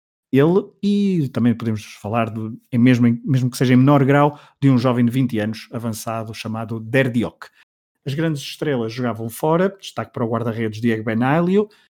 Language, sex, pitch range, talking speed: Portuguese, male, 115-145 Hz, 165 wpm